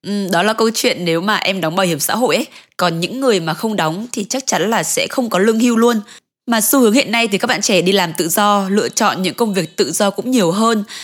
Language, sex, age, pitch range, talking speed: Vietnamese, female, 20-39, 180-250 Hz, 285 wpm